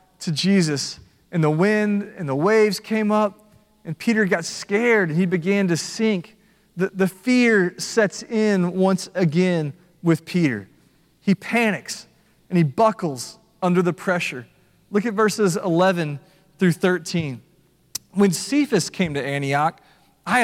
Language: English